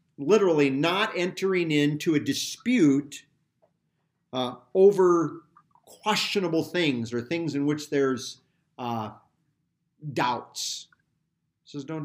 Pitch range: 135-180 Hz